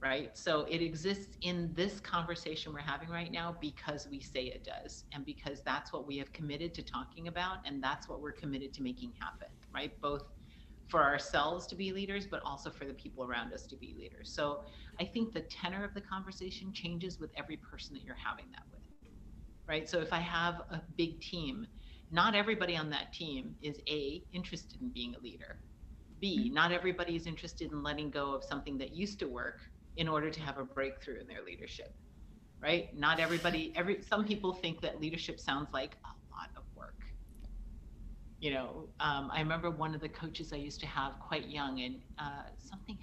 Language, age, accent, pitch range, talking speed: English, 40-59, American, 140-180 Hz, 200 wpm